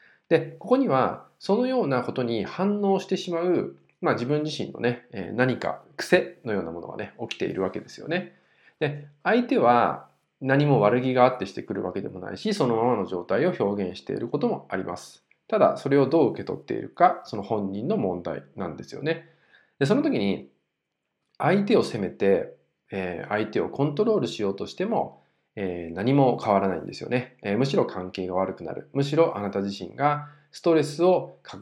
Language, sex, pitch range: Japanese, male, 100-165 Hz